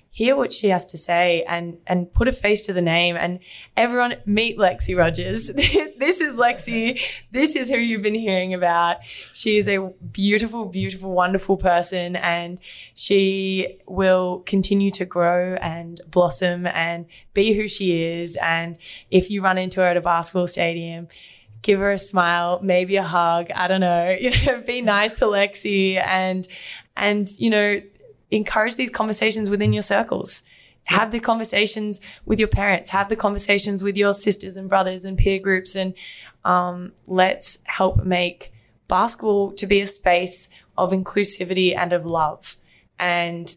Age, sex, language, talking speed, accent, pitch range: 20-39, female, English, 165 wpm, Australian, 170-200 Hz